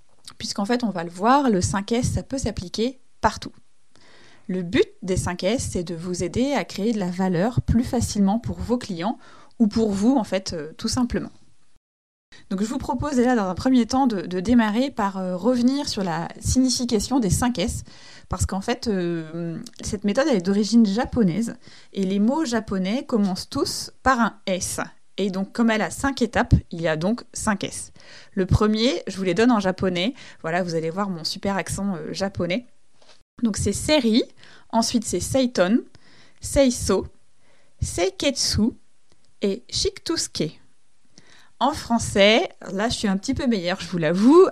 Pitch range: 185-245 Hz